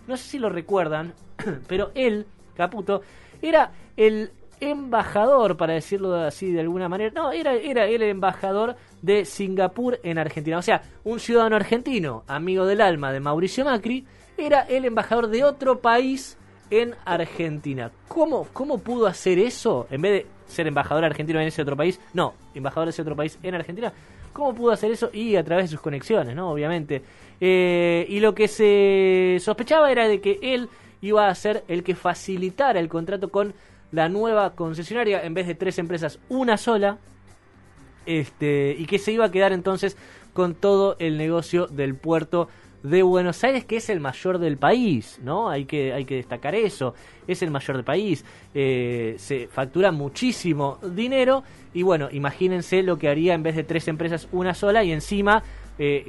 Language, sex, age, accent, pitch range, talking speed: Spanish, male, 20-39, Argentinian, 155-210 Hz, 175 wpm